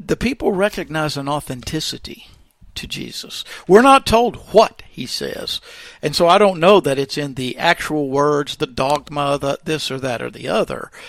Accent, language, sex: American, English, male